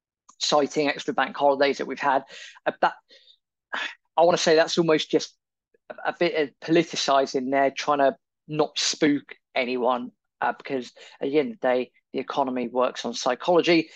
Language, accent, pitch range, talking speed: English, British, 140-175 Hz, 165 wpm